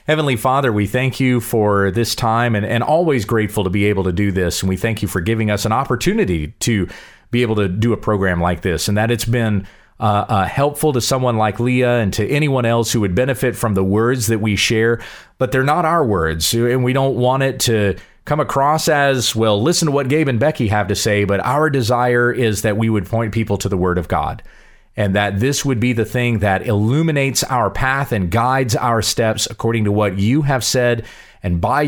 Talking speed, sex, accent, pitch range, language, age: 230 wpm, male, American, 100-130 Hz, English, 40-59